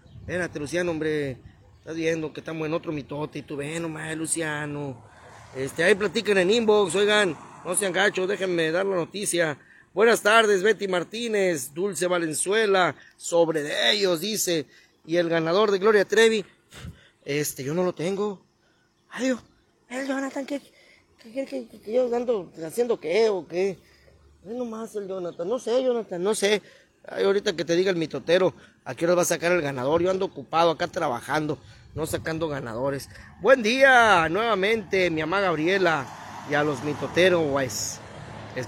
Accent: Mexican